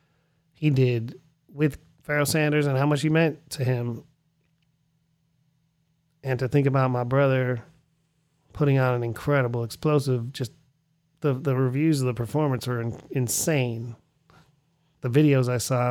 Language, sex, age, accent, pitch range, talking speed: English, male, 30-49, American, 120-155 Hz, 140 wpm